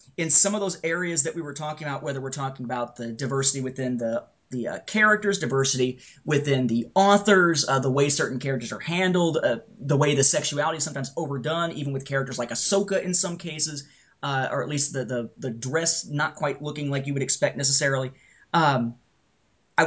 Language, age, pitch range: English, 30-49, 135-175 Hz